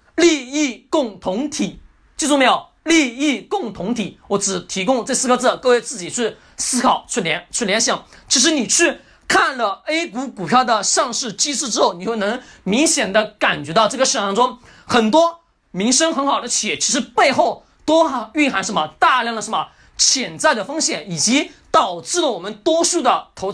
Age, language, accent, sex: 40-59, Chinese, native, male